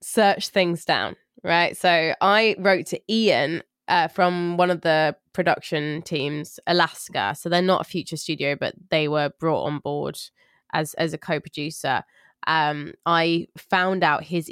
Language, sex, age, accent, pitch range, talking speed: English, female, 20-39, British, 150-185 Hz, 155 wpm